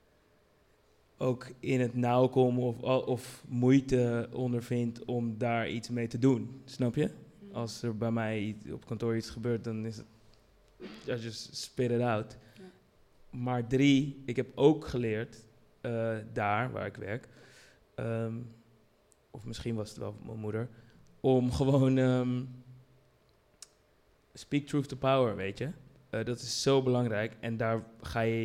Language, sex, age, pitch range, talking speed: Dutch, male, 20-39, 115-130 Hz, 145 wpm